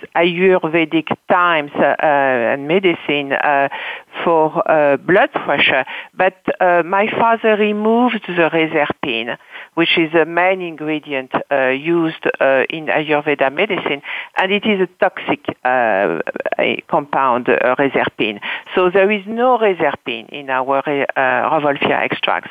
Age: 50-69